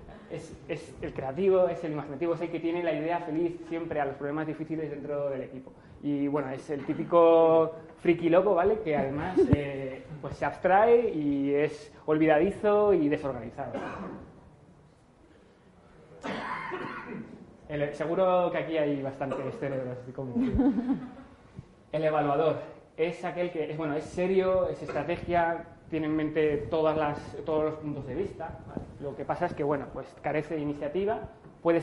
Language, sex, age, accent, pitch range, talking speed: Spanish, male, 20-39, Spanish, 145-170 Hz, 150 wpm